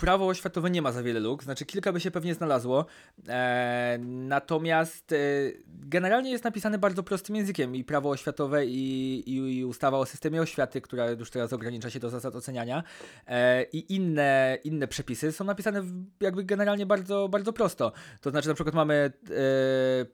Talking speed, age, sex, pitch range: 175 wpm, 20-39, male, 125-170 Hz